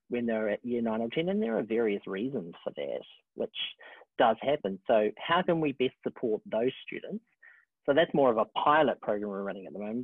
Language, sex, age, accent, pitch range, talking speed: English, male, 40-59, Australian, 110-150 Hz, 220 wpm